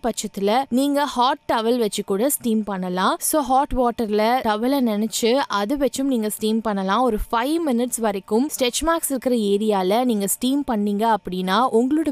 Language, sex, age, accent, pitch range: Tamil, female, 20-39, native, 205-275 Hz